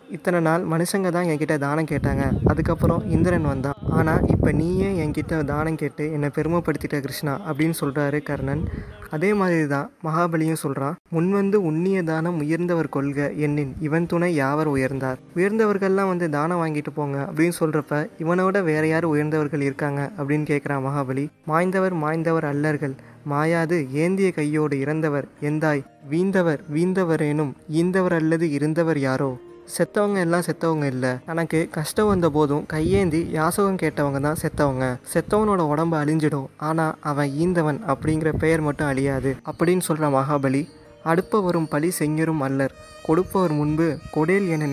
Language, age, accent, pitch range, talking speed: Tamil, 20-39, native, 145-170 Hz, 135 wpm